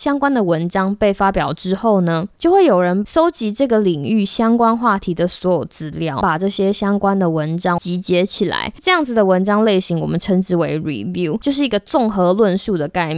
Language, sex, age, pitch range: Chinese, female, 20-39, 180-230 Hz